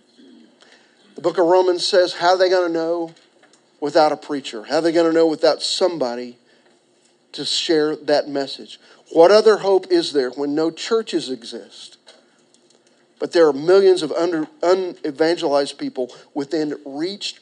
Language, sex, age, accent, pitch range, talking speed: English, male, 40-59, American, 135-175 Hz, 150 wpm